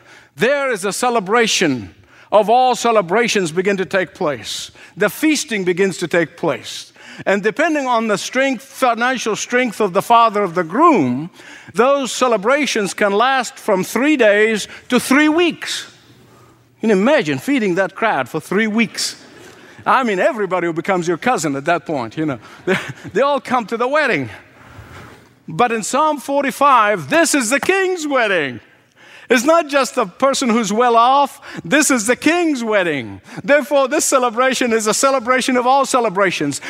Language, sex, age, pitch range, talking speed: English, male, 50-69, 170-255 Hz, 160 wpm